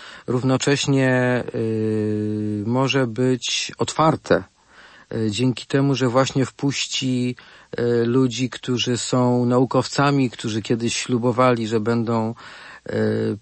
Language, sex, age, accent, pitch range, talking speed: Polish, male, 50-69, native, 110-135 Hz, 100 wpm